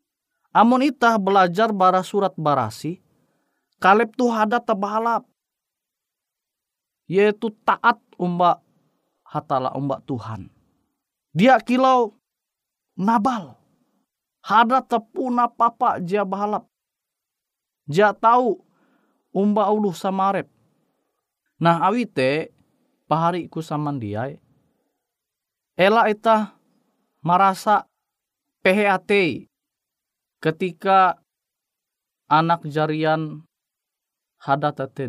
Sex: male